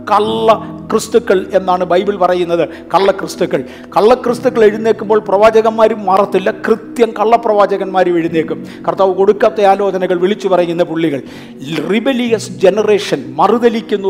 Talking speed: 100 wpm